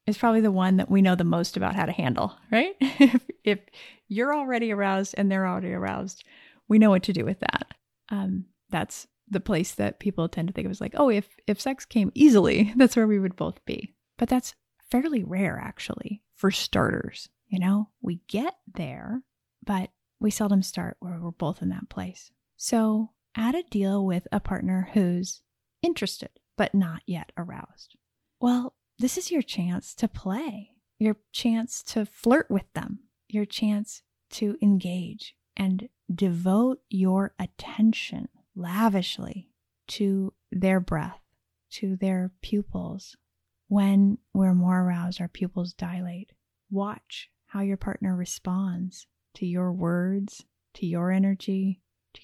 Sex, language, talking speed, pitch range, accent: female, English, 155 wpm, 185-225 Hz, American